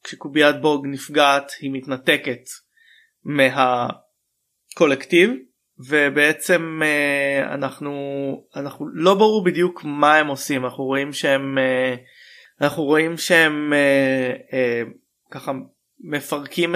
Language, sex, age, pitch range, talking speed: Hebrew, male, 20-39, 130-160 Hz, 80 wpm